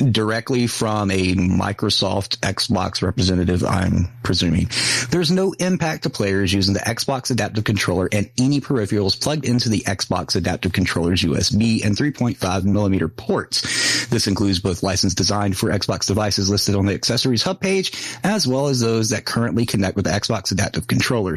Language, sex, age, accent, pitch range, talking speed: English, male, 30-49, American, 100-120 Hz, 165 wpm